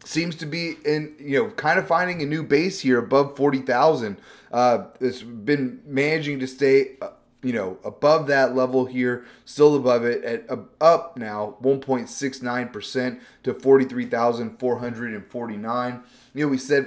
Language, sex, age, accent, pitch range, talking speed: English, male, 30-49, American, 120-150 Hz, 140 wpm